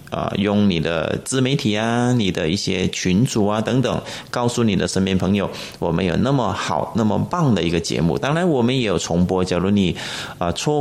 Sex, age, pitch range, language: male, 30-49, 90-110 Hz, Chinese